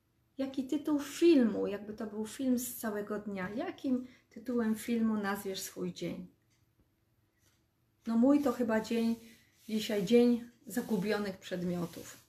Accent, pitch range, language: native, 195-240 Hz, Polish